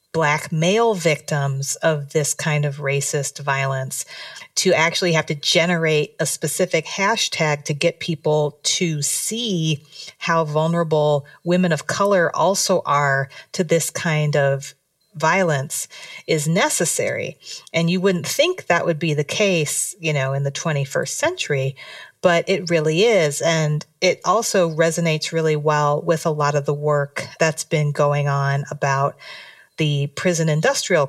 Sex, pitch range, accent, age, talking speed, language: female, 145-170 Hz, American, 40-59, 145 wpm, English